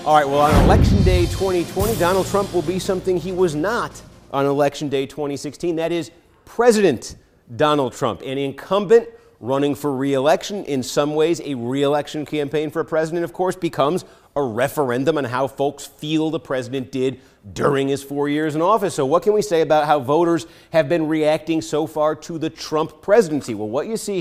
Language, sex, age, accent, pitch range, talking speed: English, male, 40-59, American, 145-185 Hz, 190 wpm